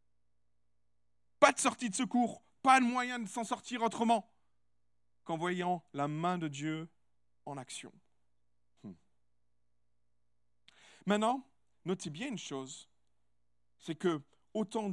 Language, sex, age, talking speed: French, male, 40-59, 115 wpm